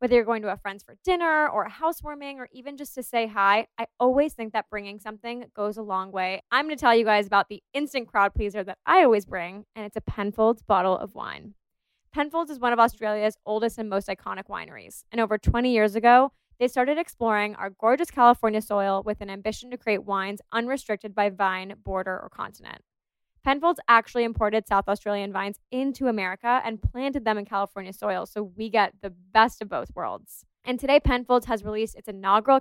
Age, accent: 10-29, American